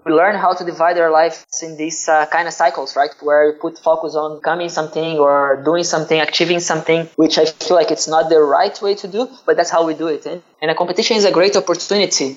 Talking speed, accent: 245 wpm, Brazilian